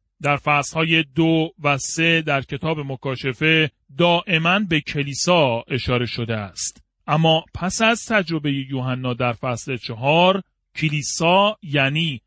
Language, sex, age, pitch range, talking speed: Persian, male, 40-59, 135-190 Hz, 120 wpm